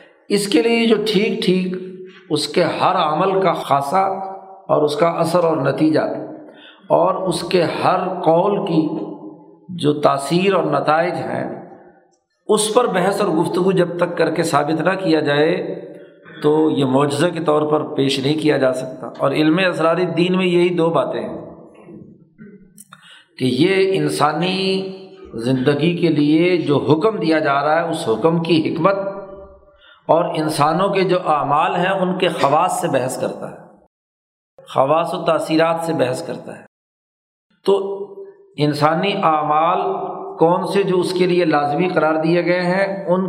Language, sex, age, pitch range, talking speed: Urdu, male, 50-69, 155-190 Hz, 155 wpm